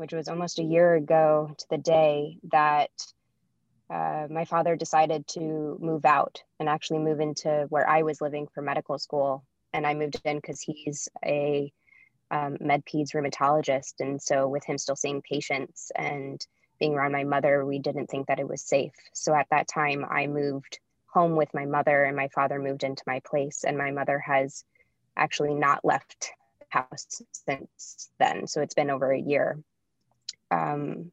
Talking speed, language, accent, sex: 180 wpm, English, American, female